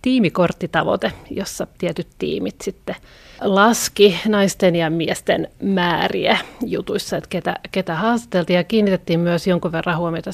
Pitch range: 170-205 Hz